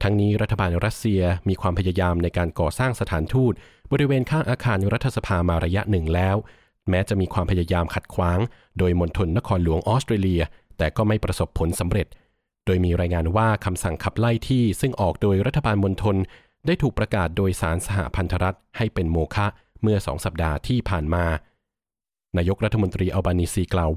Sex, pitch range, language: male, 90-110 Hz, Thai